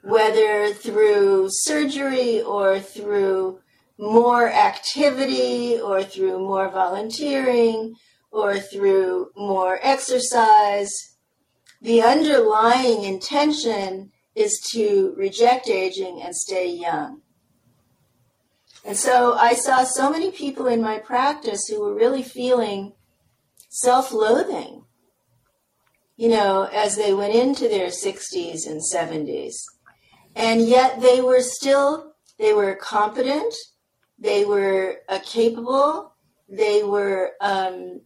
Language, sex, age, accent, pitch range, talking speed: English, female, 50-69, American, 200-275 Hz, 100 wpm